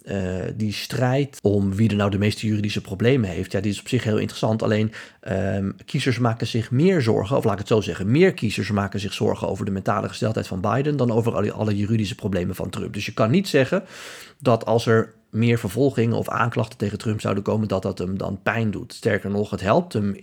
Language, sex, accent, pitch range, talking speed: Dutch, male, Dutch, 100-125 Hz, 225 wpm